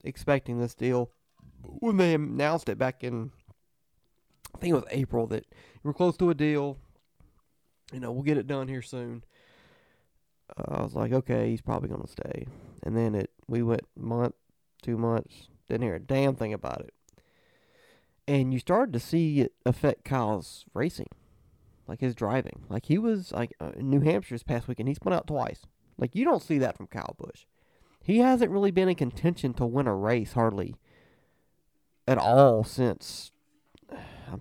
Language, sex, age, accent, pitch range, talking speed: English, male, 30-49, American, 120-145 Hz, 180 wpm